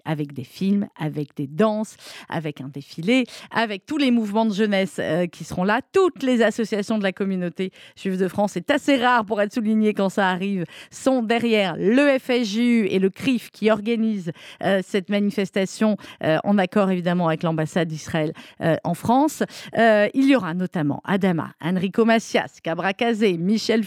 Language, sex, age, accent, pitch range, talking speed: French, female, 40-59, French, 190-245 Hz, 175 wpm